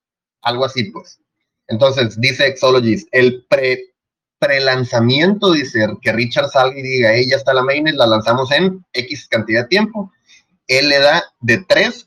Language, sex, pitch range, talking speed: Spanish, male, 115-165 Hz, 155 wpm